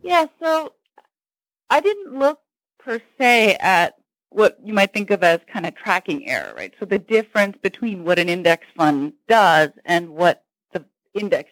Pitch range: 195-295 Hz